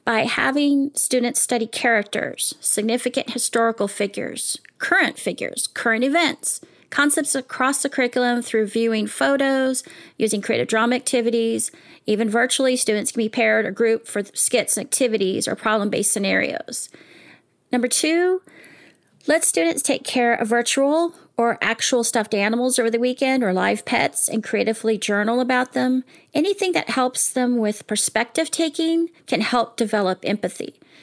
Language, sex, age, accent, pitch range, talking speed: English, female, 30-49, American, 225-275 Hz, 140 wpm